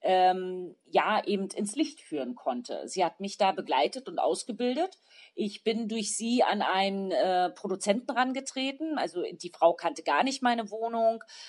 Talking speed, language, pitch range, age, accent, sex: 160 wpm, English, 195-255 Hz, 40-59, German, female